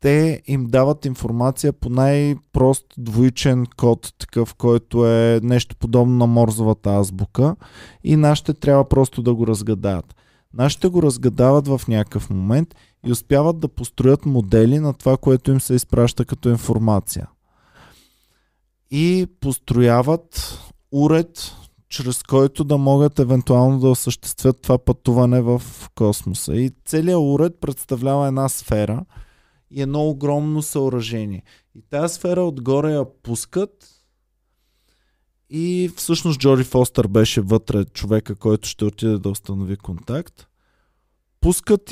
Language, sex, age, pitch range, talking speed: Bulgarian, male, 20-39, 110-145 Hz, 125 wpm